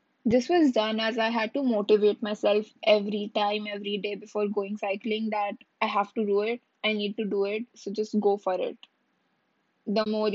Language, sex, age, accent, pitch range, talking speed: English, female, 10-29, Indian, 200-230 Hz, 195 wpm